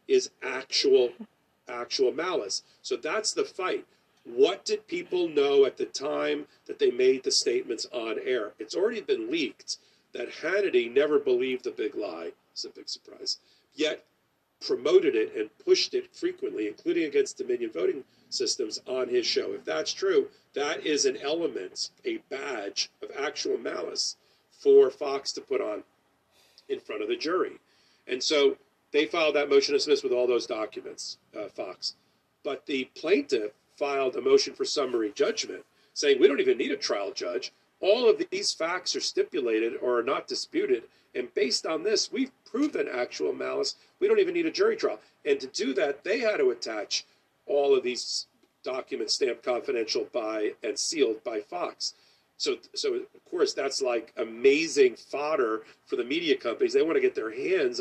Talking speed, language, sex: 170 wpm, English, male